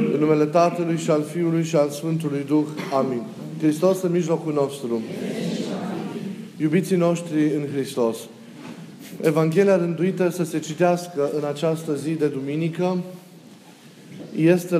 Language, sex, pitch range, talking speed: Romanian, male, 150-180 Hz, 120 wpm